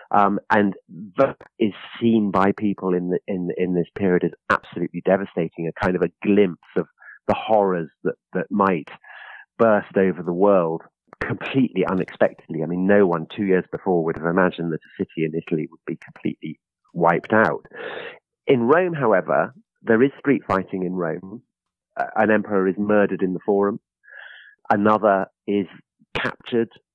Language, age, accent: English, 40-59, British